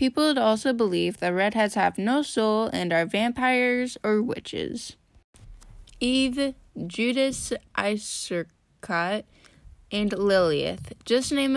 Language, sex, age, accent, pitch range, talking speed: English, female, 10-29, American, 190-245 Hz, 110 wpm